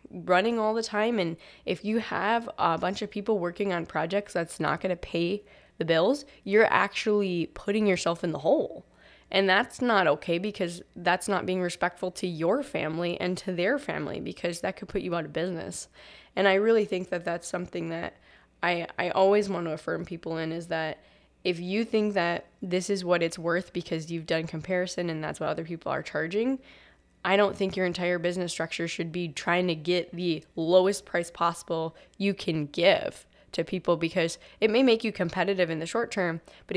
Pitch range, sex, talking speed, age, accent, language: 165-195 Hz, female, 200 wpm, 10-29, American, English